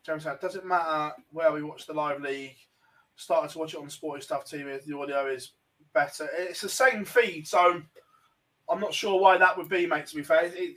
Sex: male